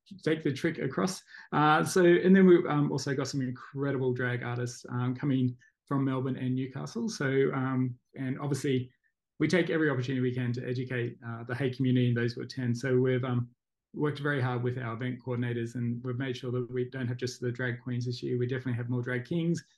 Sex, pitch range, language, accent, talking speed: male, 125-140 Hz, English, Australian, 220 wpm